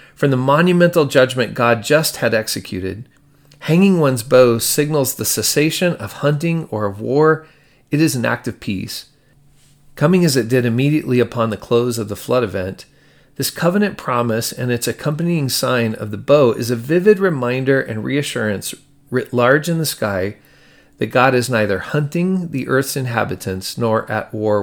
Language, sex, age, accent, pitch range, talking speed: English, male, 40-59, American, 110-145 Hz, 170 wpm